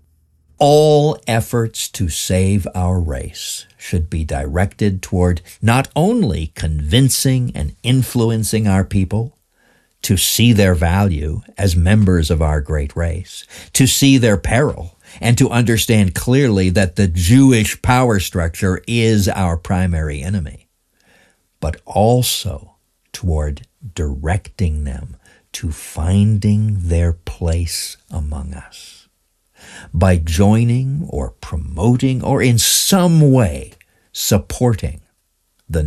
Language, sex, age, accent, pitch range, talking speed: English, male, 60-79, American, 80-110 Hz, 110 wpm